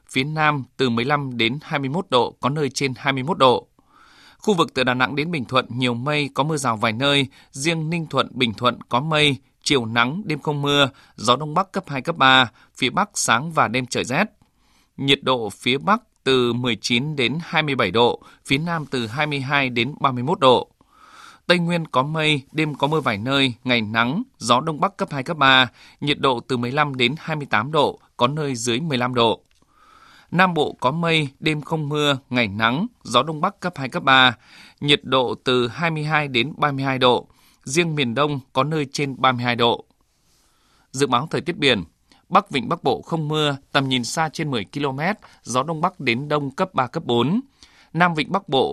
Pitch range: 125-155 Hz